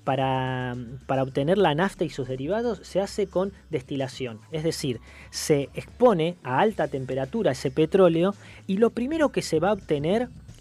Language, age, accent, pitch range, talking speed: Spanish, 20-39, Argentinian, 135-180 Hz, 165 wpm